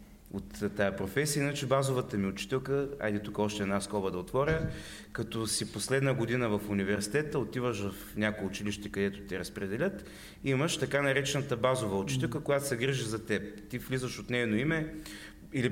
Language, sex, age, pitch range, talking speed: Bulgarian, male, 30-49, 105-135 Hz, 165 wpm